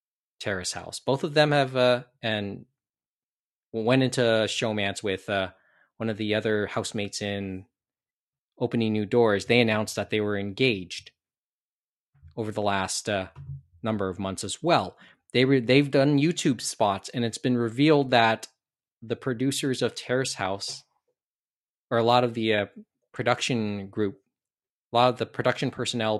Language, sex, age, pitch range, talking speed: English, male, 20-39, 105-135 Hz, 155 wpm